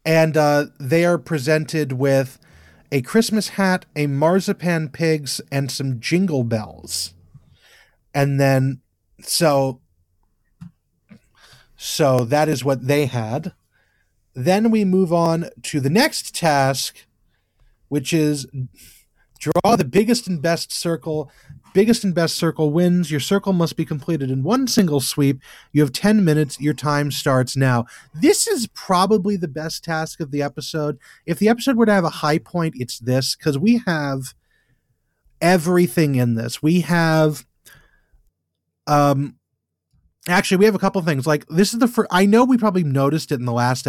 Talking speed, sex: 155 wpm, male